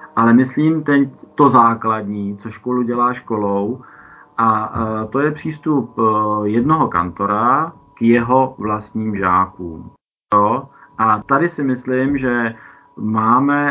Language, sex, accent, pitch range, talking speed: Czech, male, native, 110-130 Hz, 110 wpm